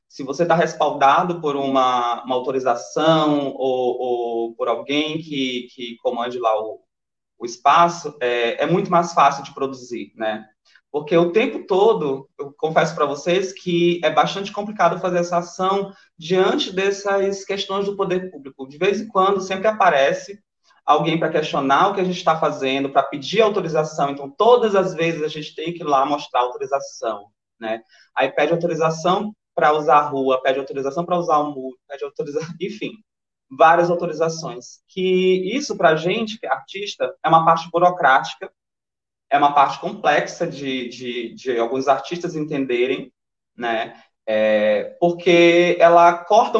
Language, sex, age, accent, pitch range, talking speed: Portuguese, male, 20-39, Brazilian, 135-185 Hz, 160 wpm